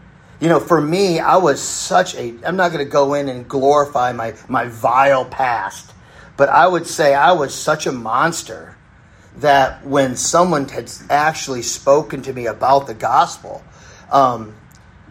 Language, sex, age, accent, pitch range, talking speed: English, male, 40-59, American, 135-175 Hz, 165 wpm